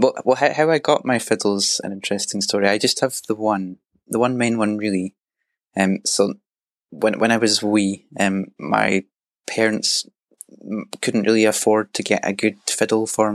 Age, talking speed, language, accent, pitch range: 20-39, 170 wpm, English, British, 95-110 Hz